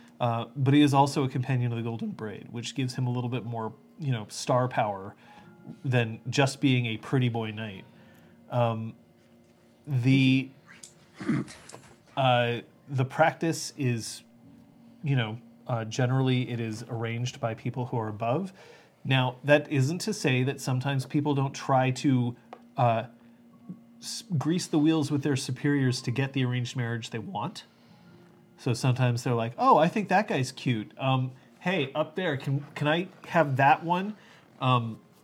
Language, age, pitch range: English, 30-49, 120-165 Hz